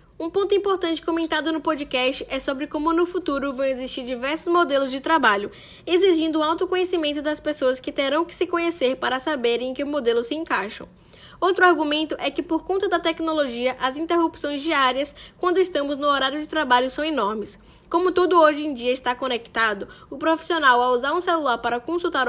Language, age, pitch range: Portuguese, 10-29, 280-345 Hz